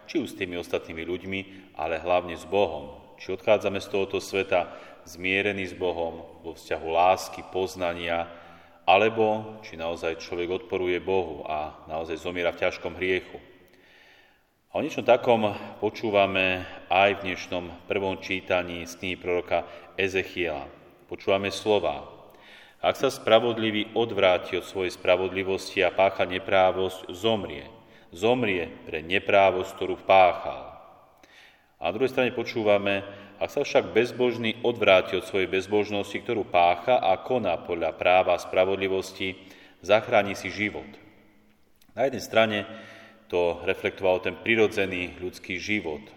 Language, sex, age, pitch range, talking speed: Slovak, male, 30-49, 90-105 Hz, 130 wpm